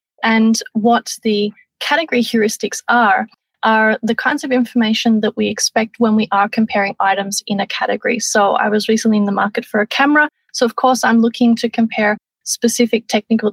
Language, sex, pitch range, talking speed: English, female, 210-240 Hz, 180 wpm